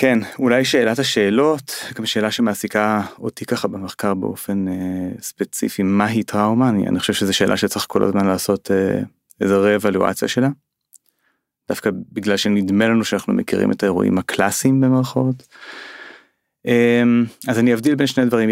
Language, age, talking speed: Hebrew, 30-49, 145 wpm